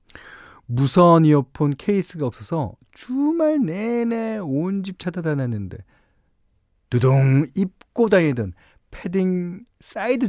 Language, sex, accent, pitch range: Korean, male, native, 105-165 Hz